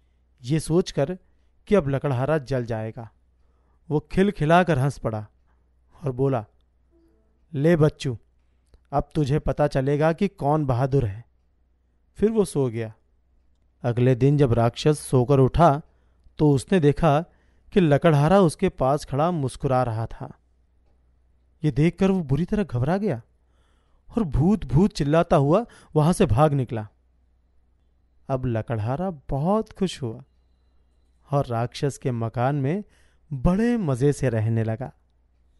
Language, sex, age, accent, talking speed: Hindi, male, 40-59, native, 125 wpm